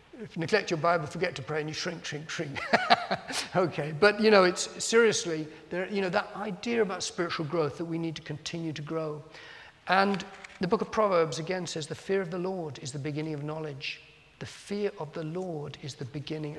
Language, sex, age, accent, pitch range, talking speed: English, male, 50-69, British, 155-205 Hz, 215 wpm